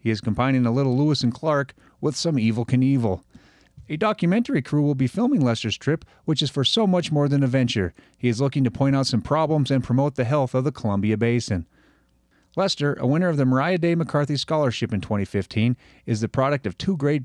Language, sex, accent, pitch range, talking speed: English, male, American, 110-140 Hz, 215 wpm